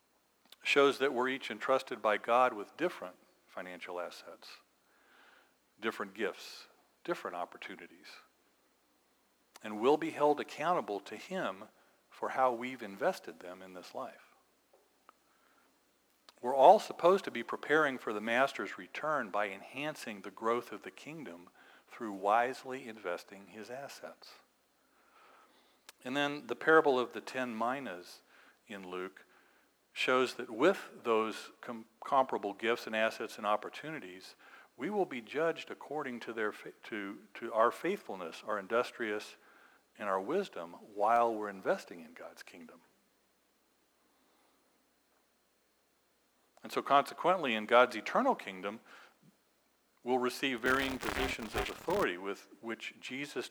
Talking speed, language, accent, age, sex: 125 wpm, English, American, 50-69, male